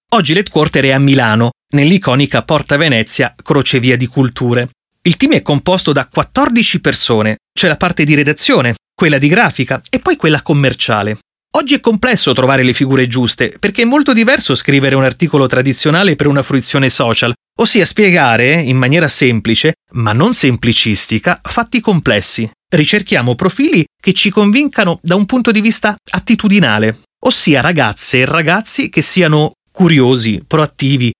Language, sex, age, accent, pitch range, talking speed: Italian, male, 30-49, native, 125-180 Hz, 150 wpm